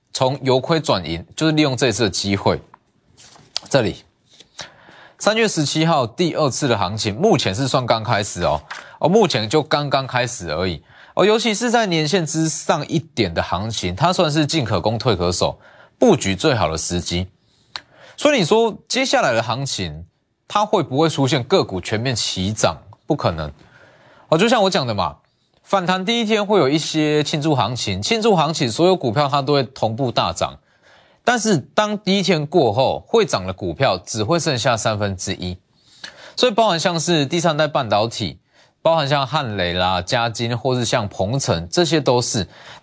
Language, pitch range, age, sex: Chinese, 110-175 Hz, 20-39, male